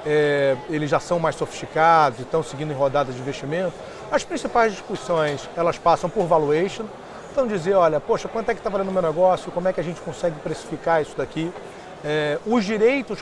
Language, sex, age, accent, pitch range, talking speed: Portuguese, male, 40-59, Brazilian, 160-210 Hz, 200 wpm